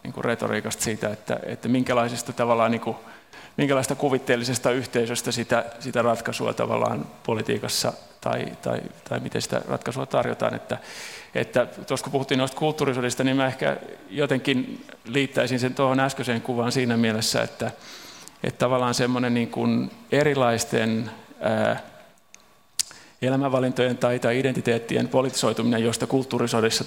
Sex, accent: male, native